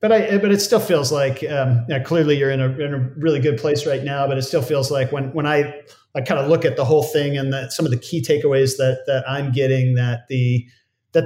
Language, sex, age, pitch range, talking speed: English, male, 40-59, 130-150 Hz, 270 wpm